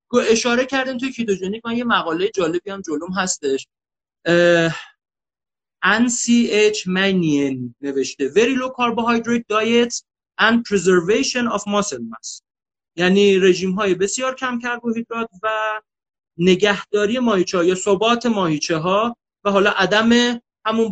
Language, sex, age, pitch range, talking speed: Persian, male, 40-59, 190-240 Hz, 120 wpm